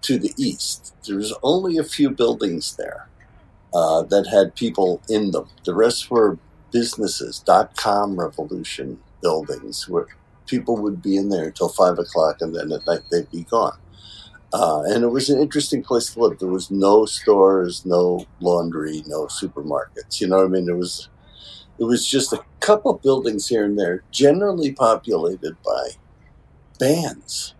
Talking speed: 165 wpm